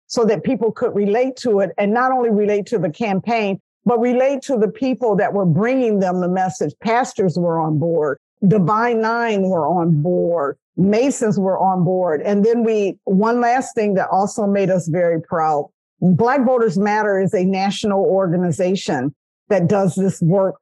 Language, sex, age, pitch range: English, female, 50-69, 190-230 Hz